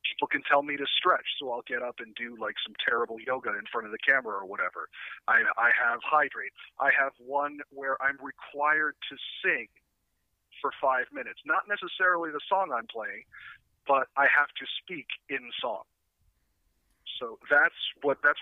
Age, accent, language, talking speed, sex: 40-59, American, English, 180 wpm, male